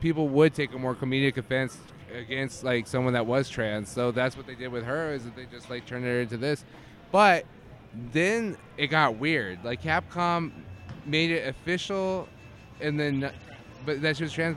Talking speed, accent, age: 190 wpm, American, 20-39